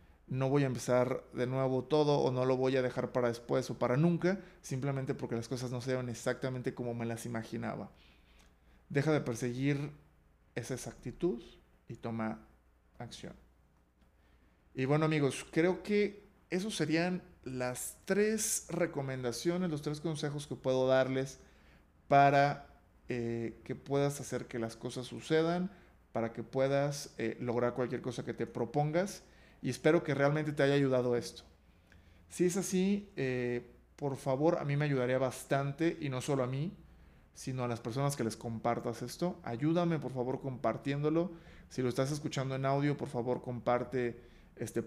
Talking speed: 160 wpm